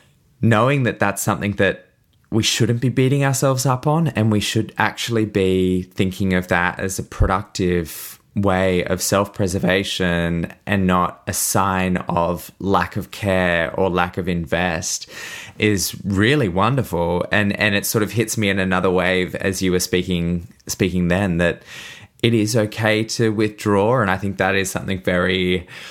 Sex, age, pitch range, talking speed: male, 20-39, 90-105 Hz, 160 wpm